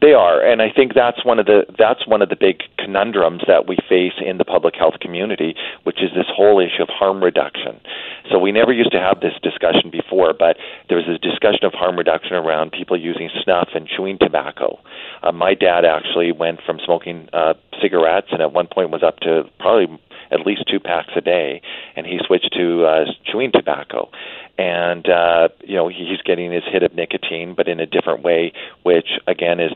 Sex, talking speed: male, 210 wpm